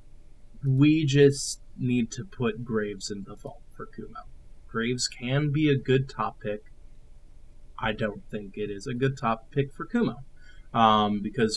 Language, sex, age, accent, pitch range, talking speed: English, male, 20-39, American, 110-135 Hz, 160 wpm